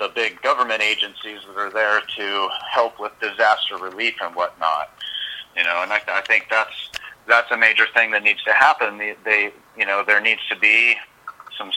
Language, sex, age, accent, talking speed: English, male, 40-59, American, 195 wpm